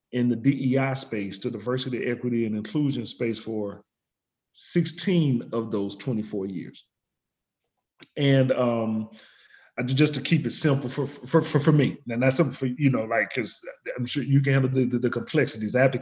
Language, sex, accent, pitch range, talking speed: English, male, American, 125-165 Hz, 175 wpm